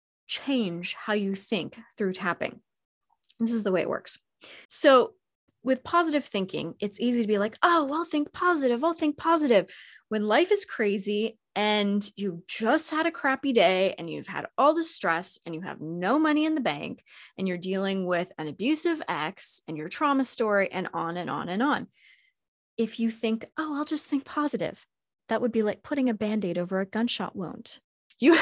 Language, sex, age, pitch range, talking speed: English, female, 20-39, 200-285 Hz, 195 wpm